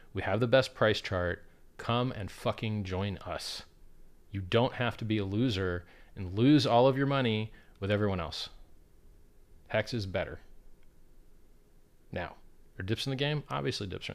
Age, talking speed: 30-49, 165 wpm